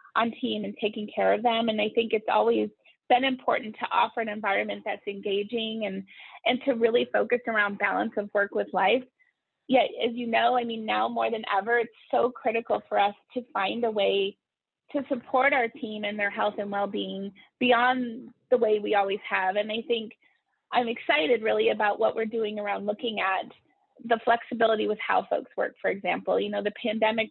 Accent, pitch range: American, 200-240 Hz